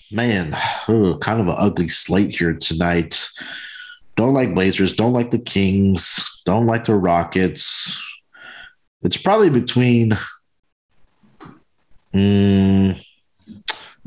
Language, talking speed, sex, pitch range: English, 100 wpm, male, 95-115 Hz